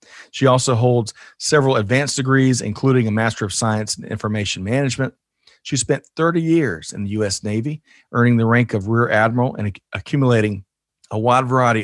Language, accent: English, American